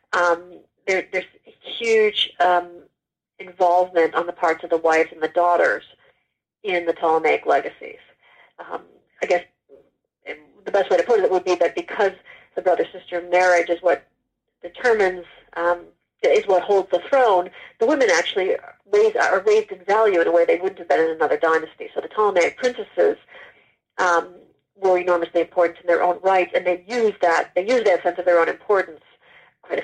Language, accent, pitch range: English, American, 175-255 Hz